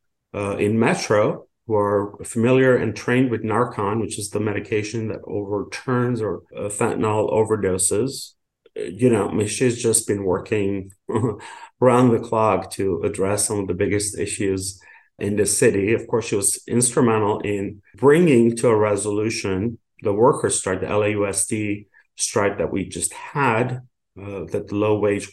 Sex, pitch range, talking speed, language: male, 100-120 Hz, 155 wpm, English